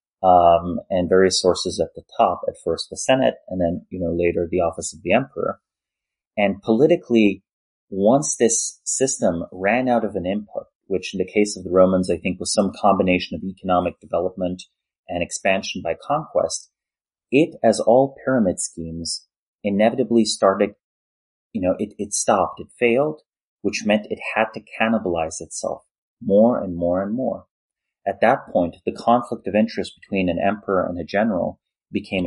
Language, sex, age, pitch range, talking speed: English, male, 30-49, 85-105 Hz, 165 wpm